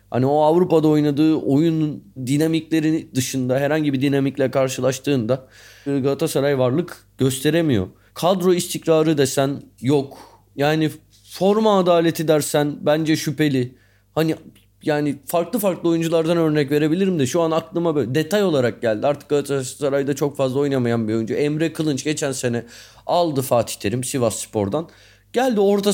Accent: native